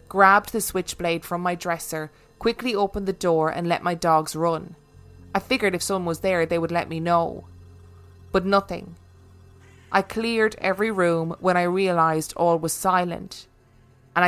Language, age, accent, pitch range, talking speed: English, 20-39, Irish, 160-190 Hz, 165 wpm